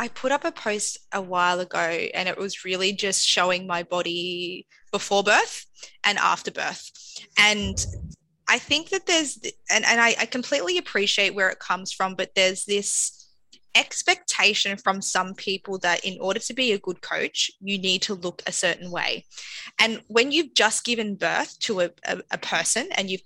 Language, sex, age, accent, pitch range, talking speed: English, female, 20-39, Australian, 185-220 Hz, 185 wpm